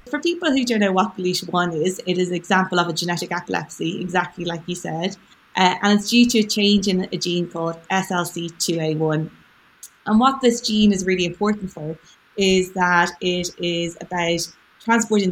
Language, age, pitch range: English, 20-39, 175-210 Hz